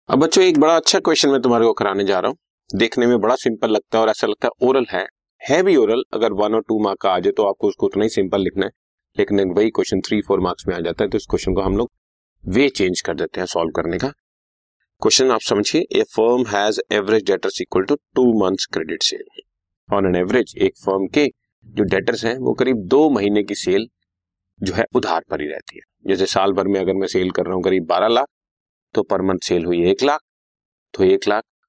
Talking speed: 220 wpm